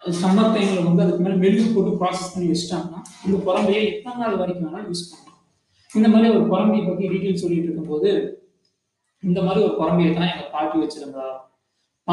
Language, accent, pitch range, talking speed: Tamil, native, 165-205 Hz, 90 wpm